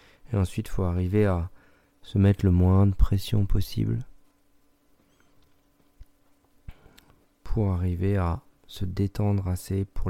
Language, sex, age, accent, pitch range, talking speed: French, male, 40-59, French, 95-105 Hz, 120 wpm